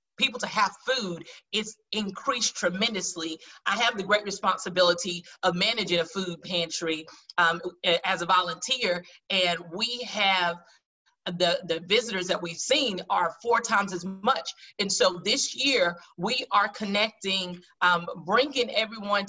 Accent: American